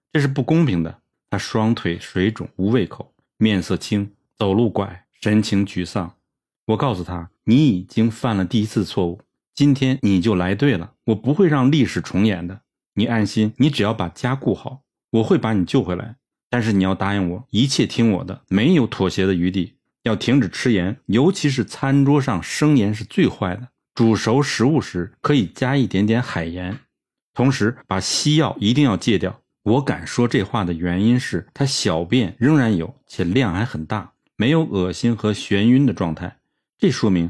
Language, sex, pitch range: Chinese, male, 95-130 Hz